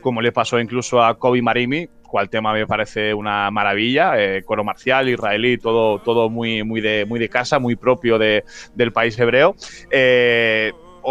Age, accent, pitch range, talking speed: 30-49, Spanish, 120-160 Hz, 175 wpm